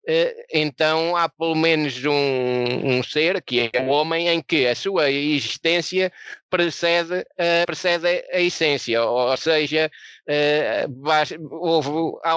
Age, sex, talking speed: 20-39, male, 110 wpm